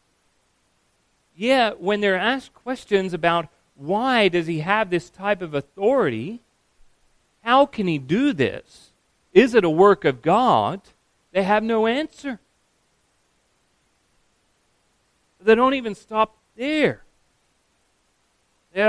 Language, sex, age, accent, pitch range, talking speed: English, male, 40-59, American, 125-195 Hz, 110 wpm